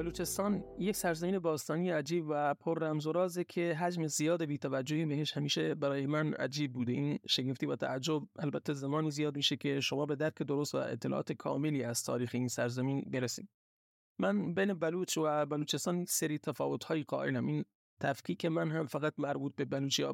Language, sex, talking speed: Persian, male, 170 wpm